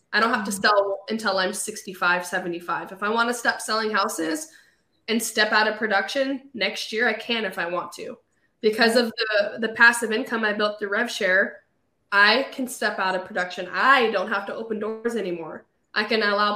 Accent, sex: American, female